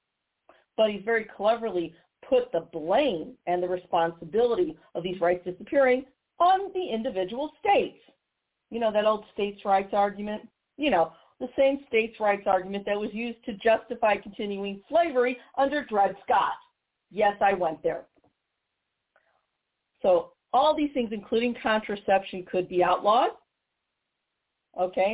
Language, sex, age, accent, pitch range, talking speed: English, female, 40-59, American, 180-235 Hz, 135 wpm